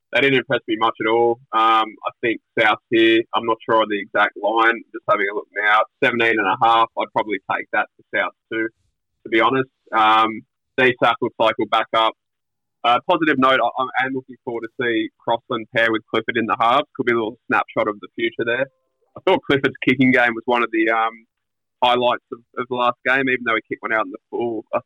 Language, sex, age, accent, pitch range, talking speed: English, male, 20-39, Australian, 115-140 Hz, 240 wpm